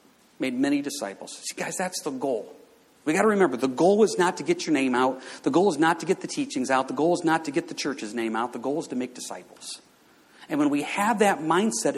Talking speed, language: 260 wpm, English